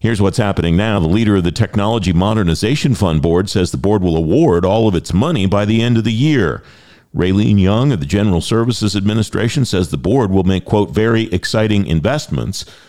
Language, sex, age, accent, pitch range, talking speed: English, male, 50-69, American, 90-115 Hz, 200 wpm